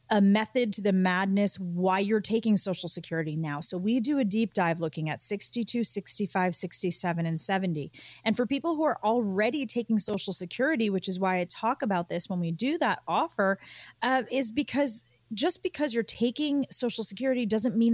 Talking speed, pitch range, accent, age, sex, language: 185 wpm, 170-225 Hz, American, 30-49, female, English